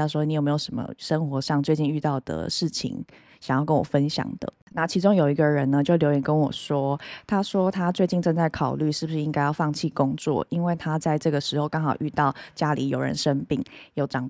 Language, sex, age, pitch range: Chinese, female, 20-39, 145-185 Hz